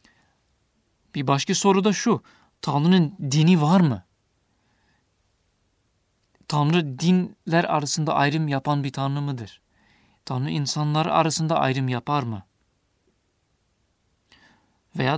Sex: male